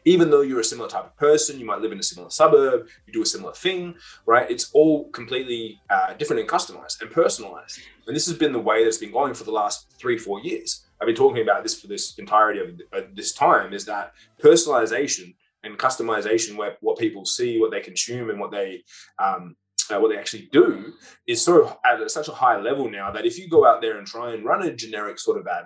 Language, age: English, 20-39